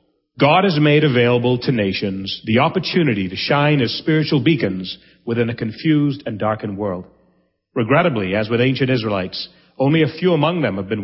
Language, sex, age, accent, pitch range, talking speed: English, male, 40-59, American, 105-145 Hz, 170 wpm